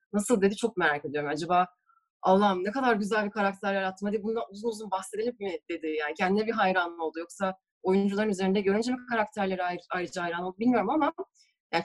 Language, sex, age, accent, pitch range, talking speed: Turkish, female, 30-49, native, 175-225 Hz, 190 wpm